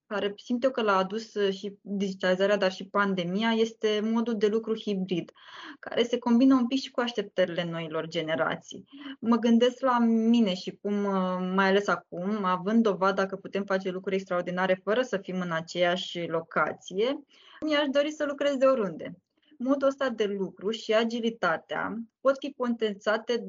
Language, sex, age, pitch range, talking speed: Romanian, female, 20-39, 190-235 Hz, 160 wpm